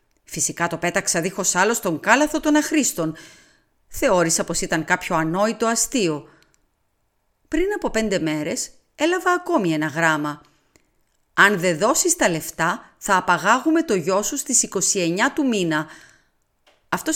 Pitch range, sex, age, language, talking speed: 165-235 Hz, female, 40-59, Greek, 135 wpm